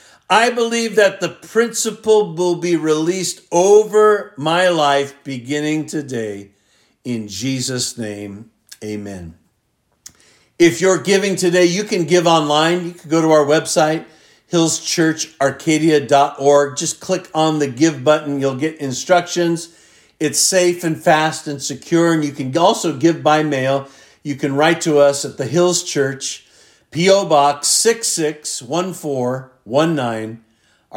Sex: male